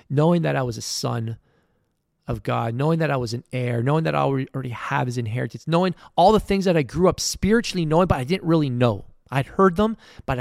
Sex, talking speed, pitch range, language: male, 230 wpm, 115-145 Hz, English